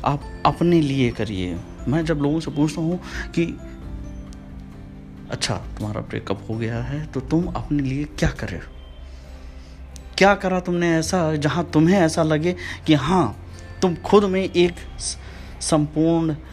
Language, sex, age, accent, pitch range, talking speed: Hindi, male, 30-49, native, 90-145 Hz, 145 wpm